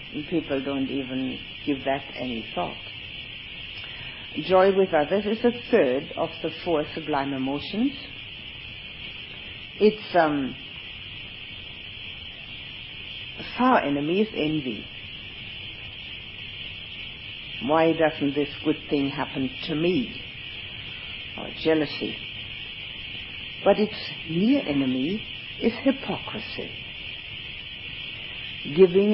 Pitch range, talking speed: 120-160 Hz, 85 wpm